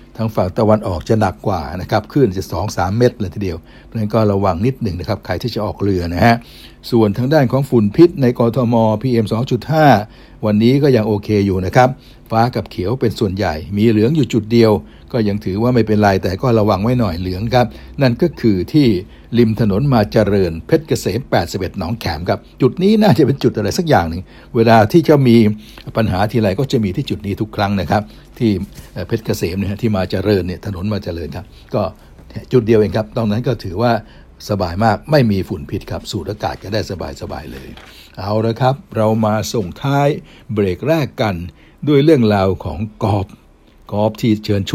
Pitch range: 100-120 Hz